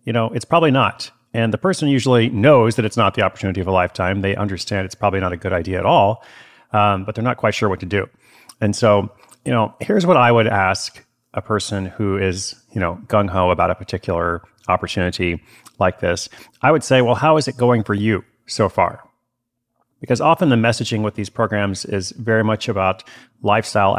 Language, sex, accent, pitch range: English, male, American, 100-125 Hz